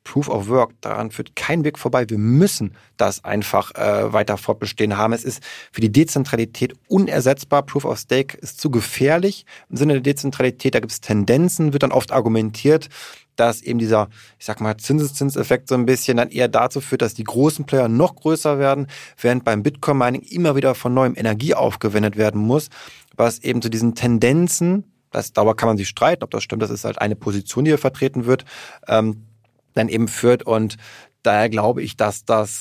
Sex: male